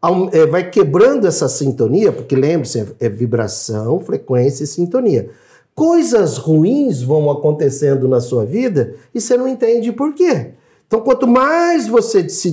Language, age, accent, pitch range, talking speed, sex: Portuguese, 50-69, Brazilian, 135-220 Hz, 140 wpm, male